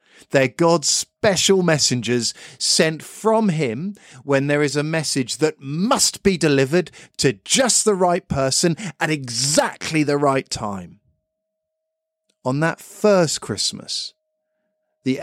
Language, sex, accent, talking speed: English, male, British, 120 wpm